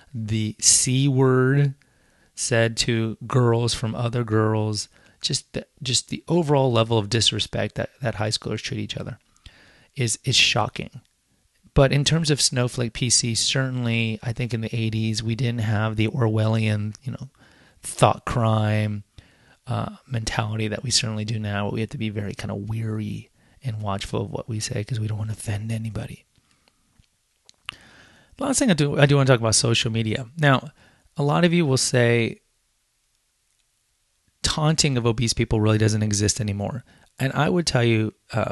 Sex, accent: male, American